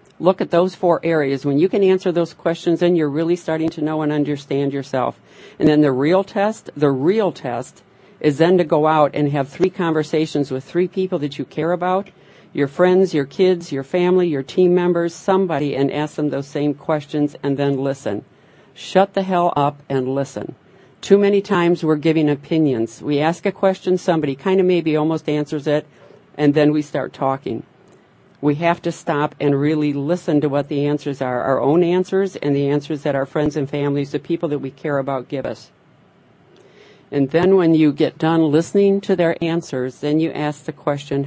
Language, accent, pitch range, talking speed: English, American, 145-175 Hz, 200 wpm